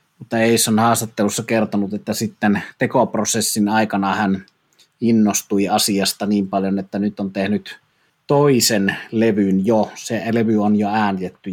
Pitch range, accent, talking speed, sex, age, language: 105-120 Hz, native, 135 wpm, male, 30-49, Finnish